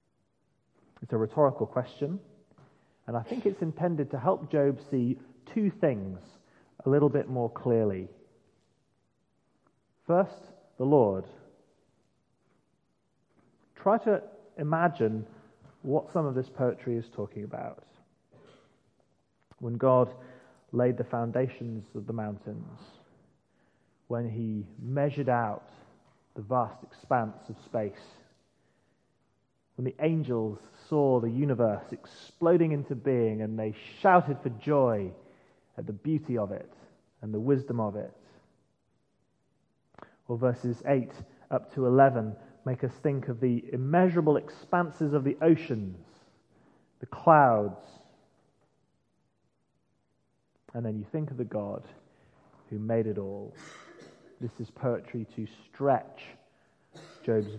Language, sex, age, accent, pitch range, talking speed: English, male, 30-49, British, 110-140 Hz, 115 wpm